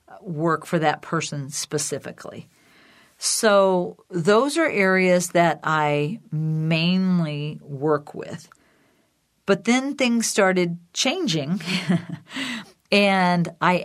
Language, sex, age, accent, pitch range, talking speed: English, female, 50-69, American, 155-180 Hz, 90 wpm